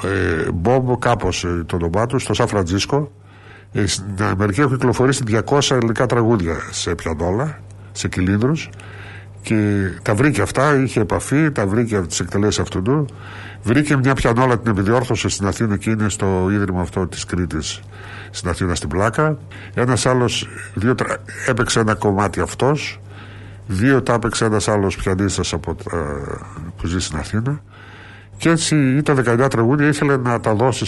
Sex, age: male, 60-79